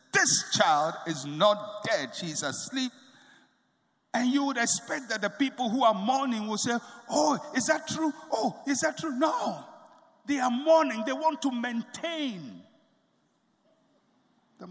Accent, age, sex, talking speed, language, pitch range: Nigerian, 60-79, male, 145 wpm, English, 210-285 Hz